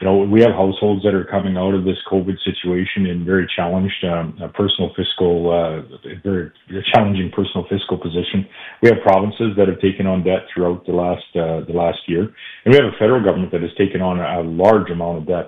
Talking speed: 215 wpm